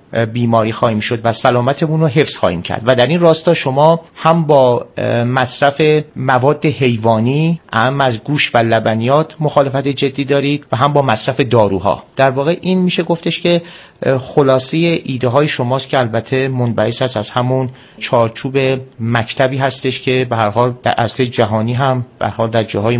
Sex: male